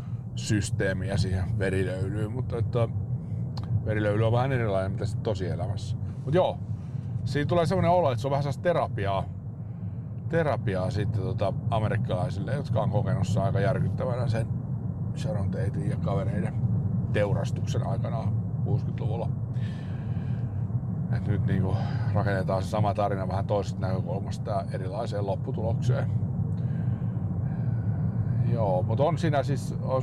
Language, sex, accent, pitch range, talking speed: Finnish, male, native, 110-130 Hz, 120 wpm